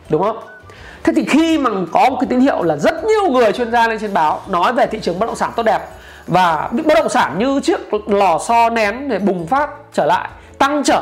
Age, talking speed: 20-39, 250 wpm